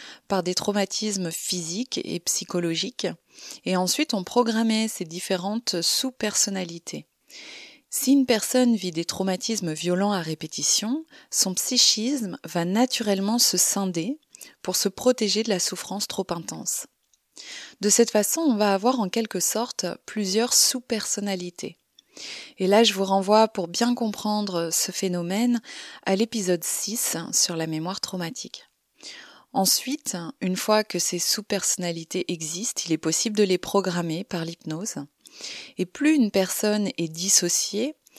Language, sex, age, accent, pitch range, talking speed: French, female, 30-49, French, 180-230 Hz, 135 wpm